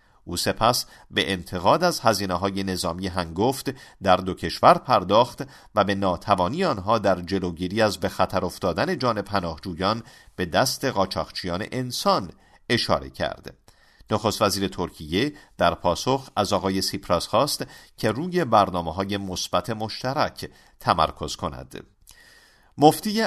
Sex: male